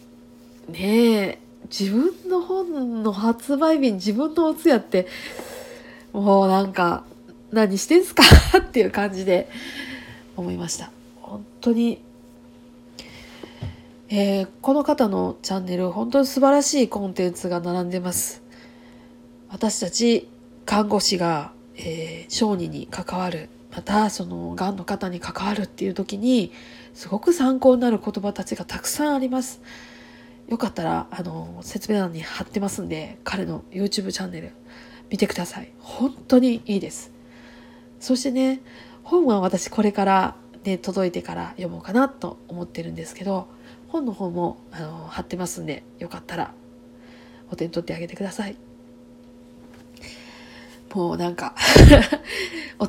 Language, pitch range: Japanese, 180-245 Hz